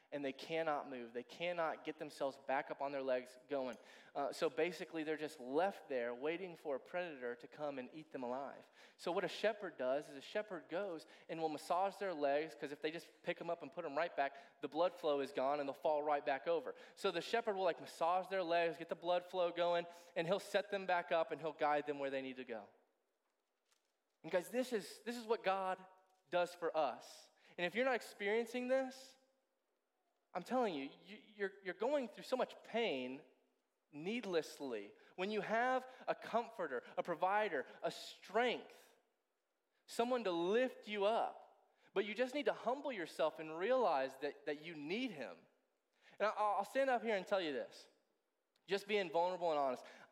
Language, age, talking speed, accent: English, 20-39, 200 wpm, American